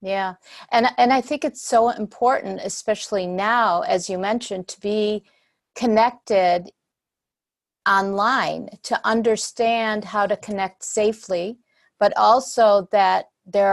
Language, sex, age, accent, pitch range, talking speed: English, female, 50-69, American, 195-225 Hz, 120 wpm